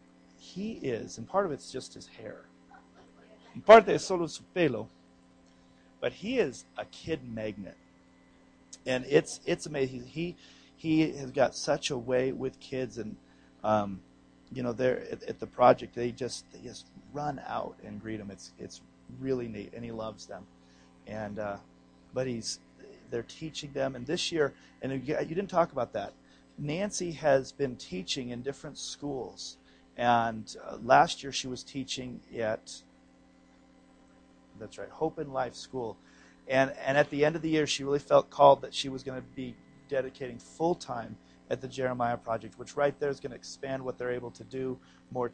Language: English